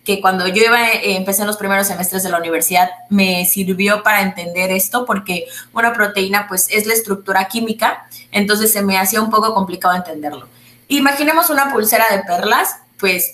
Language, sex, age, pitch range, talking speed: Spanish, female, 20-39, 185-230 Hz, 170 wpm